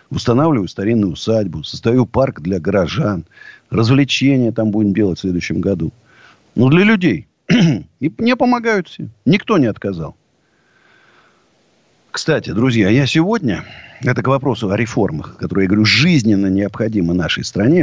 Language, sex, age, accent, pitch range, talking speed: Russian, male, 50-69, native, 100-140 Hz, 140 wpm